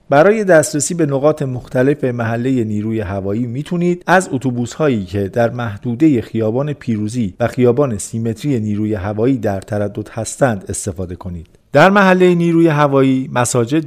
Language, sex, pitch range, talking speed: Persian, male, 105-145 Hz, 140 wpm